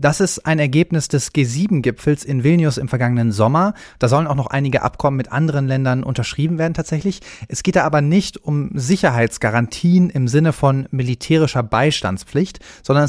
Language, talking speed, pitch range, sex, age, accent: German, 165 wpm, 125-165 Hz, male, 30-49, German